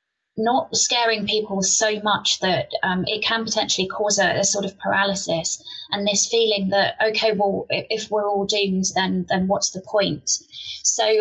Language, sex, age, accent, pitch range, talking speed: English, female, 20-39, British, 190-220 Hz, 170 wpm